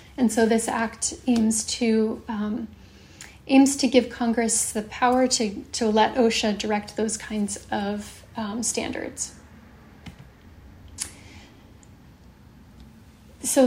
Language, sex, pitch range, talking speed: English, female, 220-255 Hz, 105 wpm